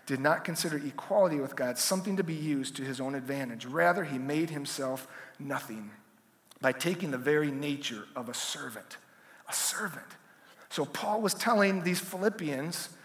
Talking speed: 160 wpm